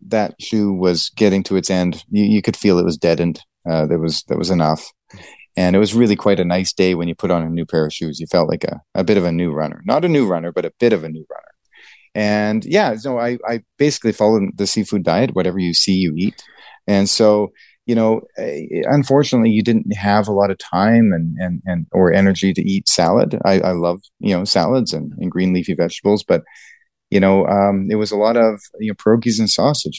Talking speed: 235 wpm